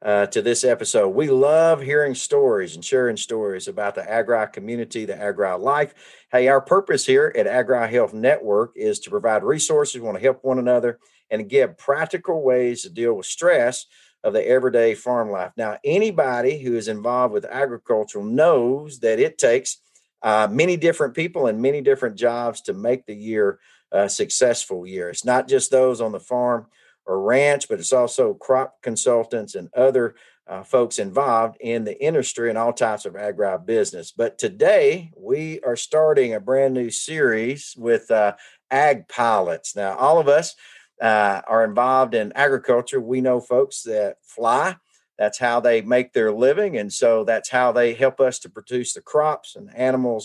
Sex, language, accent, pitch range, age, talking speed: male, English, American, 115-190 Hz, 50-69, 175 wpm